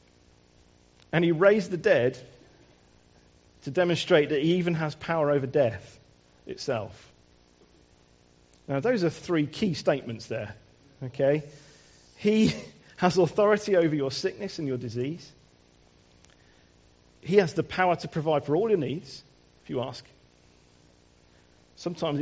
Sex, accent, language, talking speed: male, British, English, 125 wpm